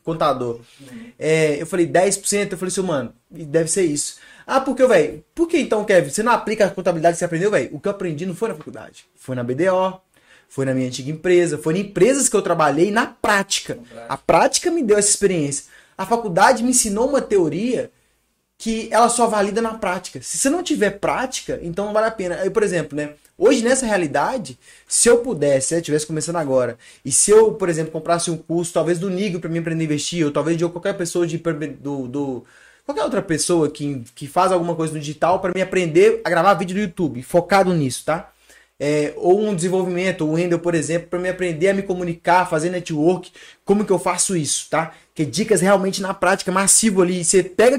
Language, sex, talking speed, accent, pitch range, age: Portuguese, male, 215 wpm, Brazilian, 160-205 Hz, 20-39